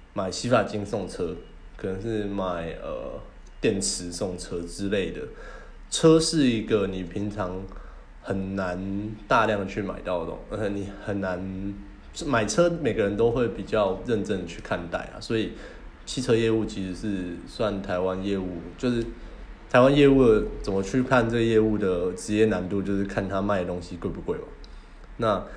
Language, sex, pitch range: Chinese, male, 95-115 Hz